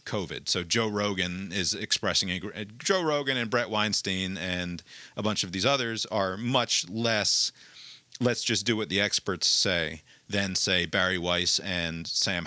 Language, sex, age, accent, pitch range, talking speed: English, male, 40-59, American, 105-145 Hz, 155 wpm